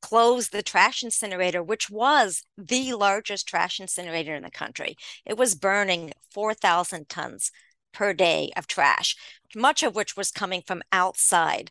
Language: English